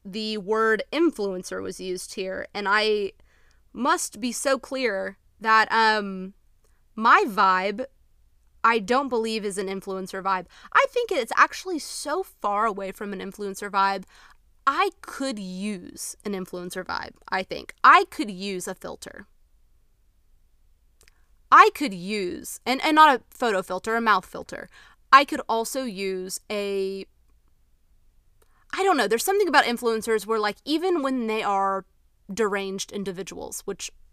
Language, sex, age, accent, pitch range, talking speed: English, female, 20-39, American, 195-275 Hz, 140 wpm